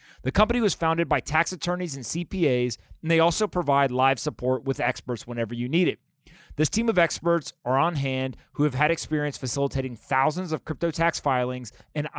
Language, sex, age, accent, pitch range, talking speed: English, male, 30-49, American, 130-155 Hz, 190 wpm